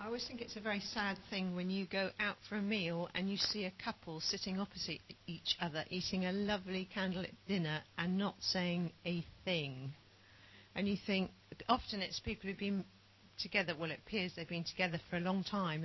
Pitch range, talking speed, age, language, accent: 175-210 Hz, 200 wpm, 50-69, English, British